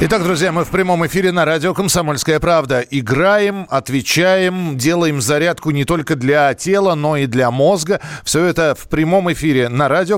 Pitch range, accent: 135-185 Hz, native